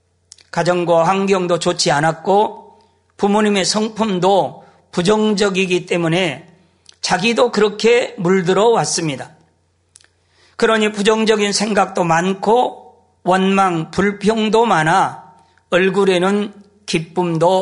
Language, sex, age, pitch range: Korean, male, 40-59, 170-220 Hz